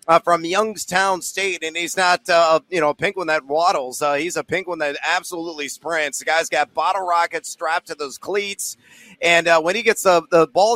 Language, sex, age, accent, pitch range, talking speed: English, male, 30-49, American, 165-205 Hz, 225 wpm